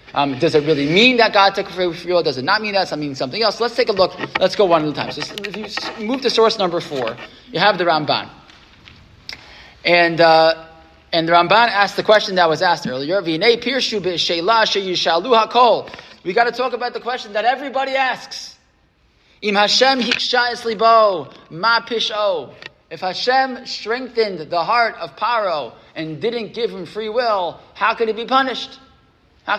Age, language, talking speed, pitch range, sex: 20-39, English, 170 wpm, 160-235 Hz, male